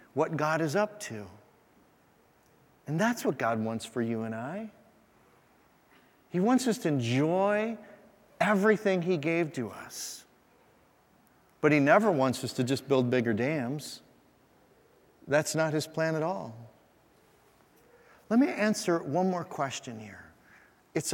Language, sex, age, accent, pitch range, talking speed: English, male, 40-59, American, 125-180 Hz, 135 wpm